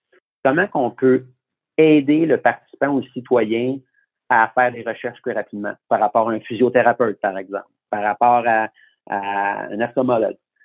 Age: 50-69